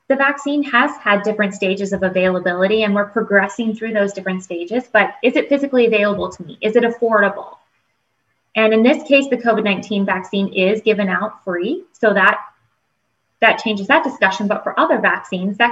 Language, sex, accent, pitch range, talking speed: English, female, American, 195-250 Hz, 180 wpm